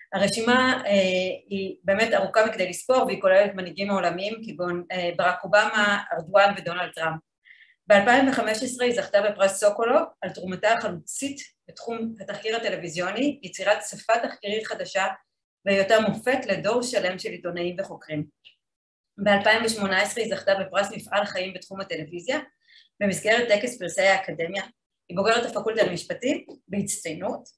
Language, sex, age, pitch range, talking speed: Hebrew, female, 30-49, 185-230 Hz, 125 wpm